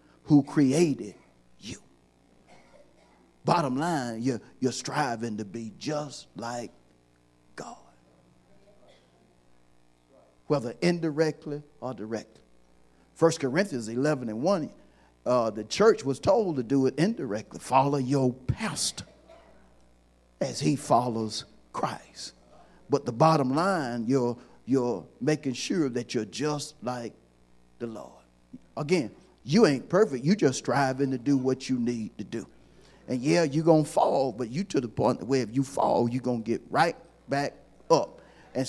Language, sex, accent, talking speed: English, male, American, 135 wpm